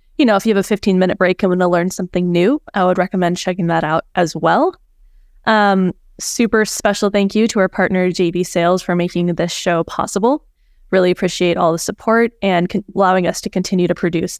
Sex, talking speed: female, 210 wpm